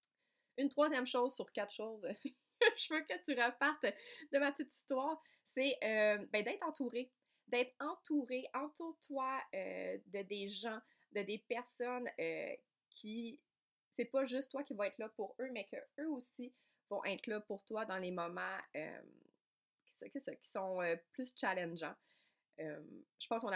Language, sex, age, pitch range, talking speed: French, female, 20-39, 195-260 Hz, 160 wpm